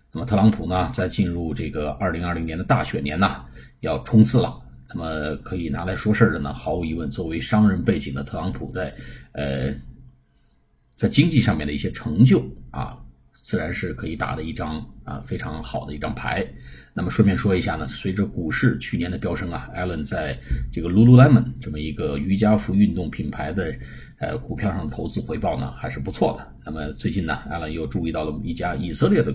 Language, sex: Chinese, male